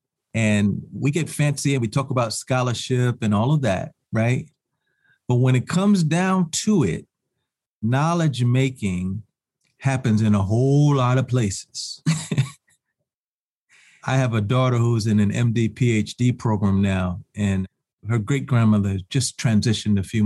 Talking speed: 135 wpm